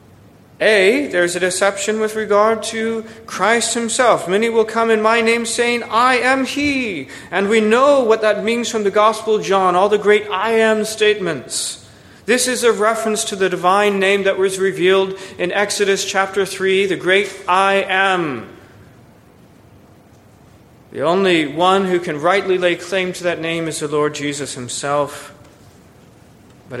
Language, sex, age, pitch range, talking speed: English, male, 40-59, 145-210 Hz, 165 wpm